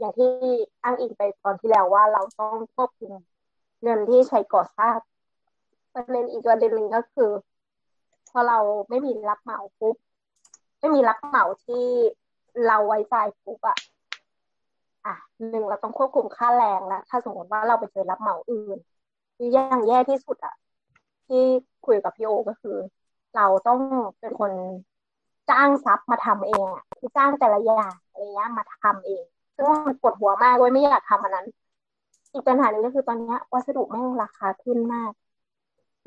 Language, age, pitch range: Thai, 20-39, 210-260 Hz